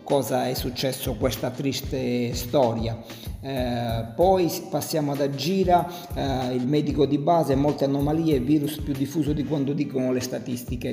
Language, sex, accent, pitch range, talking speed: Italian, male, native, 125-145 Hz, 145 wpm